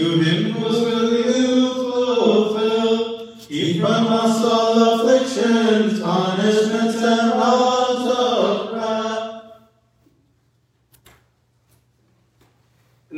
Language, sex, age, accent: English, male, 40-59, American